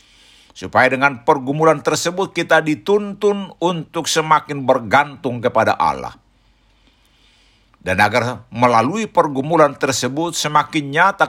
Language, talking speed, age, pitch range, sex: Indonesian, 95 wpm, 60-79, 120-170 Hz, male